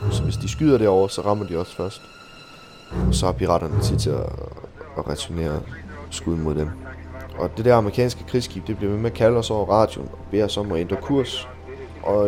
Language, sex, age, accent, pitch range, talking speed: Danish, male, 20-39, native, 85-110 Hz, 210 wpm